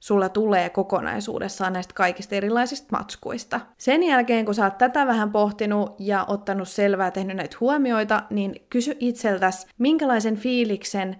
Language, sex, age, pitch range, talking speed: Finnish, female, 20-39, 190-240 Hz, 145 wpm